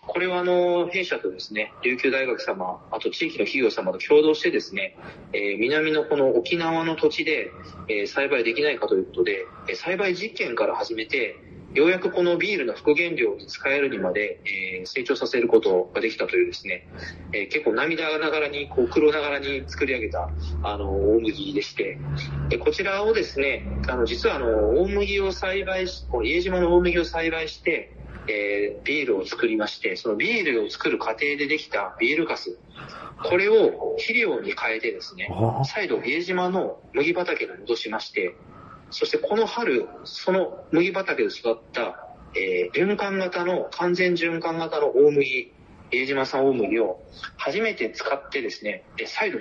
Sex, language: male, Japanese